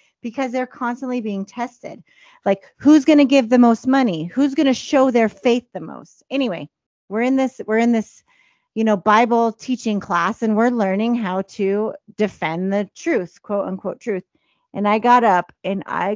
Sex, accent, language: female, American, English